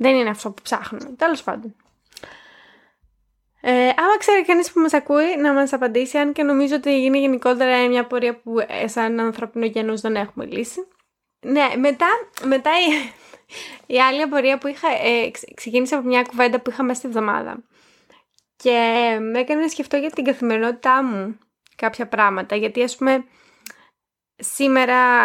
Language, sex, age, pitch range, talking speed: Greek, female, 20-39, 240-300 Hz, 155 wpm